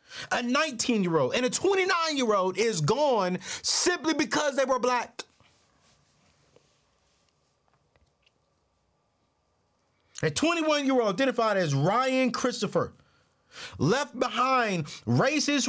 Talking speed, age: 80 wpm, 40-59